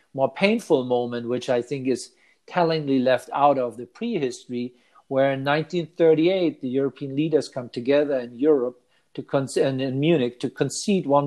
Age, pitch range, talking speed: 50-69, 125-145 Hz, 155 wpm